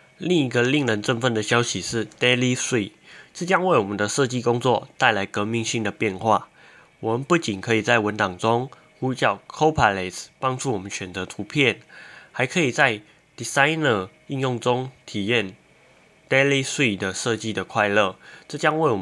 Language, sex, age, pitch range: Chinese, male, 20-39, 105-125 Hz